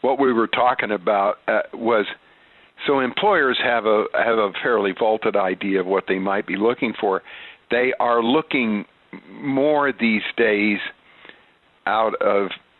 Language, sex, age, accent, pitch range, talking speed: English, male, 50-69, American, 95-105 Hz, 145 wpm